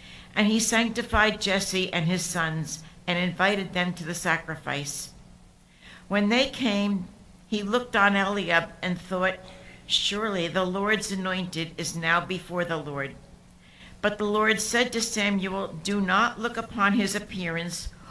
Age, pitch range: 60-79, 165-210 Hz